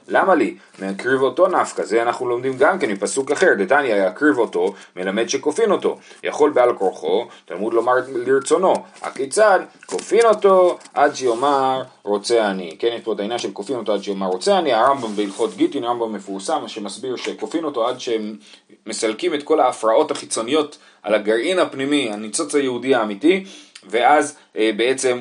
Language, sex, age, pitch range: Hebrew, male, 30-49, 110-175 Hz